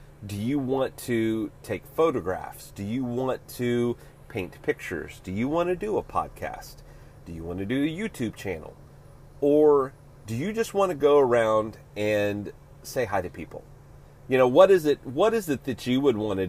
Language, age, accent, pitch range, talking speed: English, 30-49, American, 125-155 Hz, 195 wpm